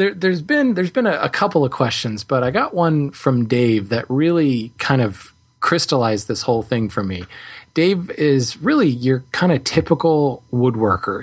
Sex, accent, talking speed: male, American, 180 wpm